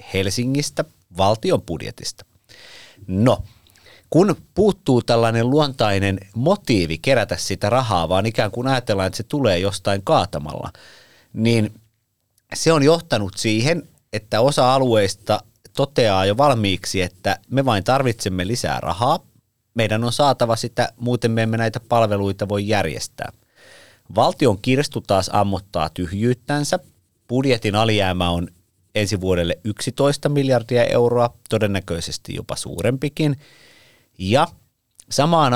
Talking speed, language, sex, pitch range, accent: 115 wpm, Finnish, male, 100-125 Hz, native